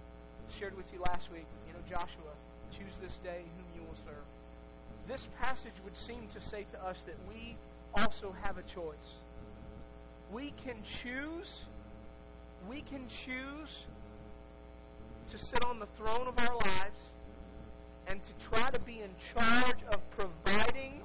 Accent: American